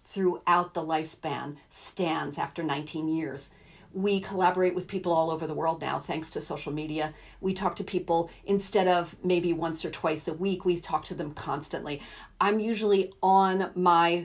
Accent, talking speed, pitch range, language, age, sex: American, 175 wpm, 160-190 Hz, English, 40-59, female